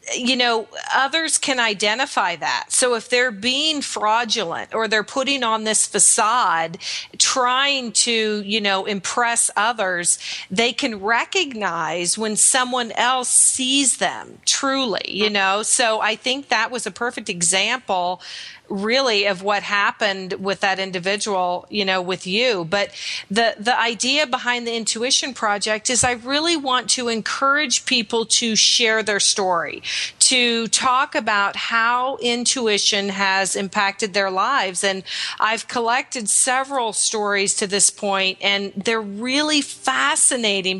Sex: female